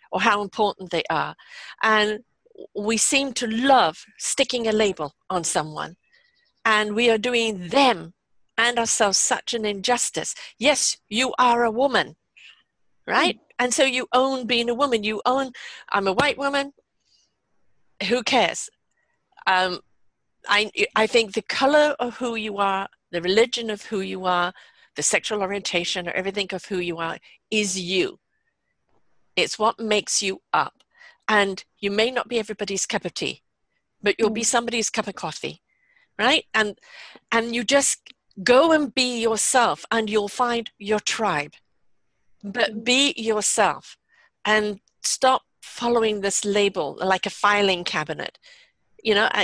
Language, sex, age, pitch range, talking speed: English, female, 50-69, 195-245 Hz, 150 wpm